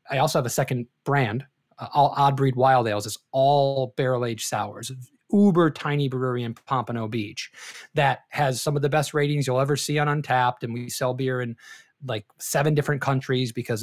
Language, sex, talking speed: English, male, 190 wpm